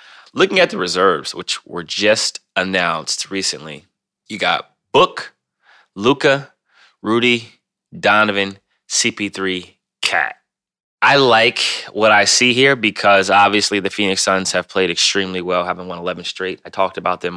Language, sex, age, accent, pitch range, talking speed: English, male, 20-39, American, 90-100 Hz, 140 wpm